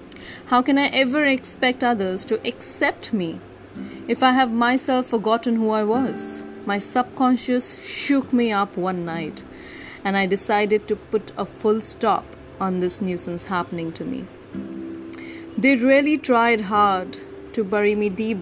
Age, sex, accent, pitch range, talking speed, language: 30-49, female, Indian, 190-245 Hz, 150 wpm, English